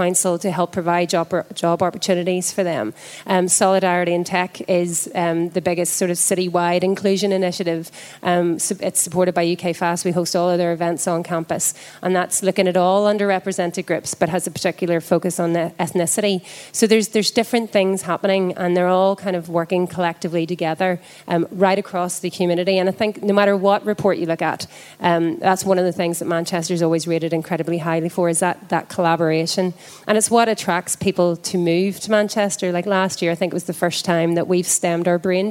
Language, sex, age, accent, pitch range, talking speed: English, female, 30-49, Irish, 170-195 Hz, 205 wpm